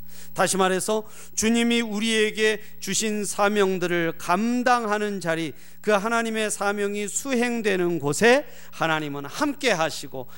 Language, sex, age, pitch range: Korean, male, 40-59, 140-200 Hz